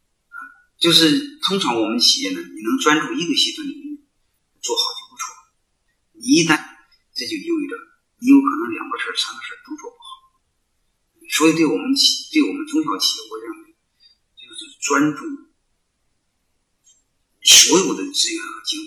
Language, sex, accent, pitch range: Chinese, male, native, 285-360 Hz